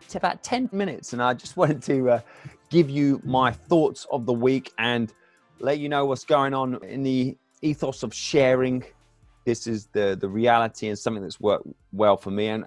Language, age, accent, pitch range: English, 20-39, British, 100-130 Hz